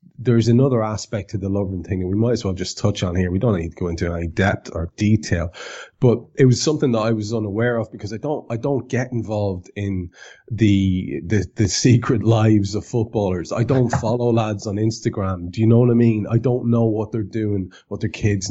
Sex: male